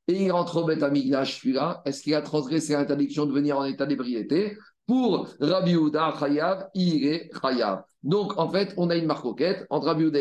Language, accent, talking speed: French, French, 190 wpm